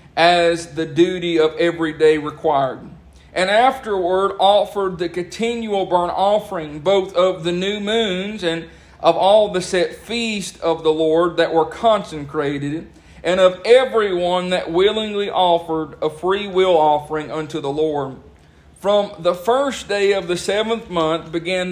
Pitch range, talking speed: 160-195 Hz, 145 wpm